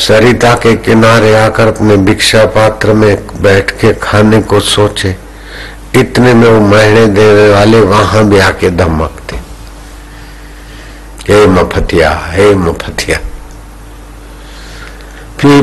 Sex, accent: male, native